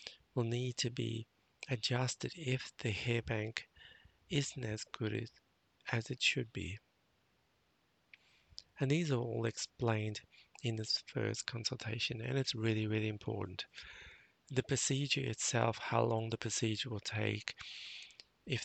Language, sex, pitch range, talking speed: English, male, 110-125 Hz, 130 wpm